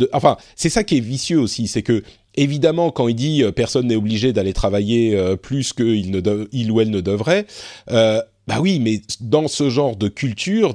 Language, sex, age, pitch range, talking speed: French, male, 40-59, 110-150 Hz, 220 wpm